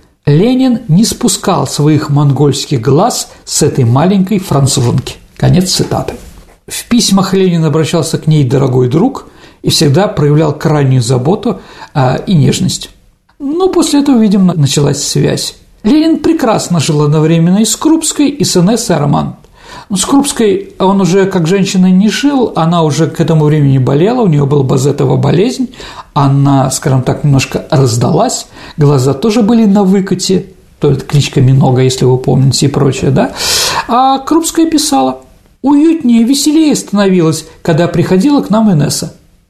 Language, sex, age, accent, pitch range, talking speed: Russian, male, 50-69, native, 145-220 Hz, 145 wpm